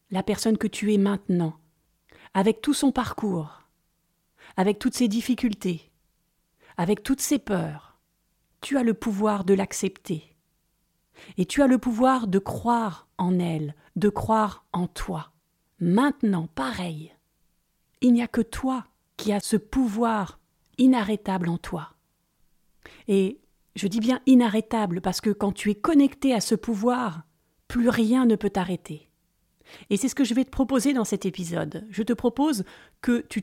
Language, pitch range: French, 190-250 Hz